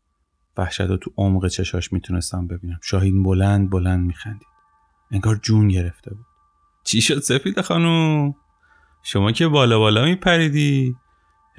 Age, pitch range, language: 30-49, 90-120 Hz, Persian